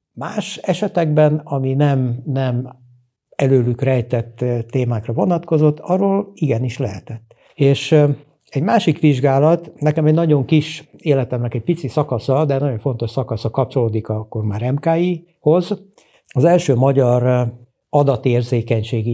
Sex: male